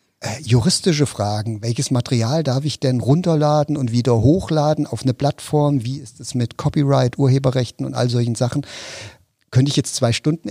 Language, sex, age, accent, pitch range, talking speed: German, male, 50-69, German, 115-140 Hz, 165 wpm